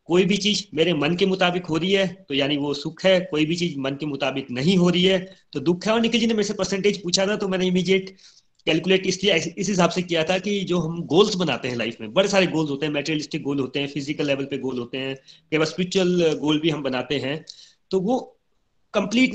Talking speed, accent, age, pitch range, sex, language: 225 wpm, native, 30-49, 150-195 Hz, male, Hindi